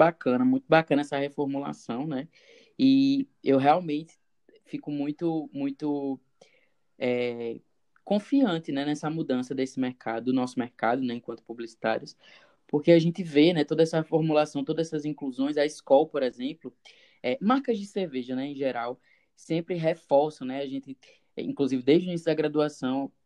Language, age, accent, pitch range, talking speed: Portuguese, 10-29, Brazilian, 135-170 Hz, 145 wpm